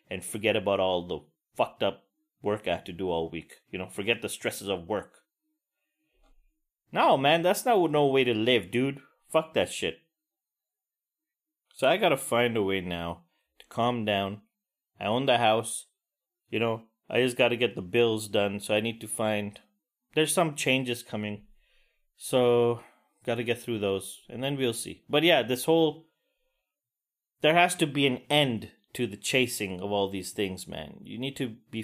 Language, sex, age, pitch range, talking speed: English, male, 30-49, 105-150 Hz, 180 wpm